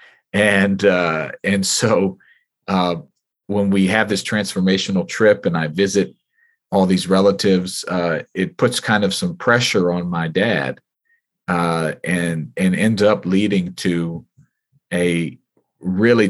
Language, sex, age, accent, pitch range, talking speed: English, male, 40-59, American, 90-100 Hz, 135 wpm